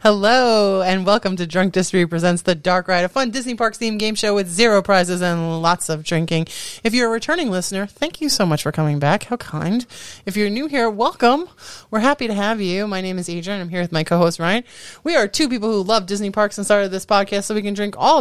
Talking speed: 245 wpm